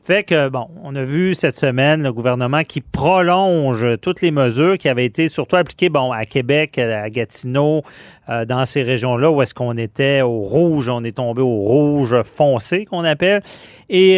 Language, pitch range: French, 125-170 Hz